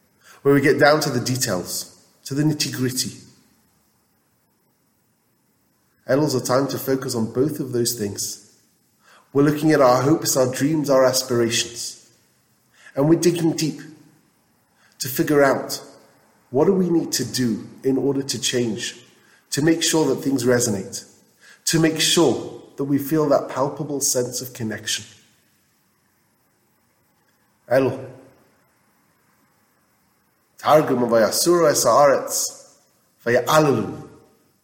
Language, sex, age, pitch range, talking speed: English, male, 30-49, 120-155 Hz, 115 wpm